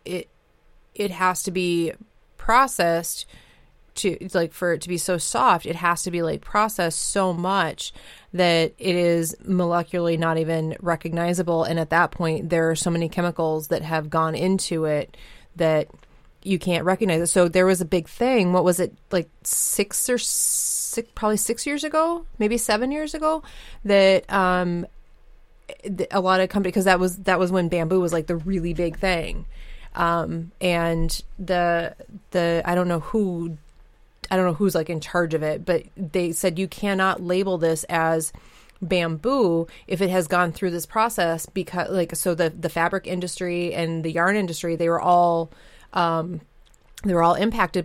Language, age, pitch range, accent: English, 30-49, 165-185 Hz, American